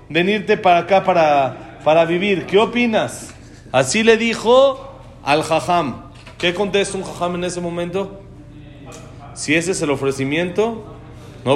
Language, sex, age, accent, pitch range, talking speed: Spanish, male, 40-59, Mexican, 135-205 Hz, 135 wpm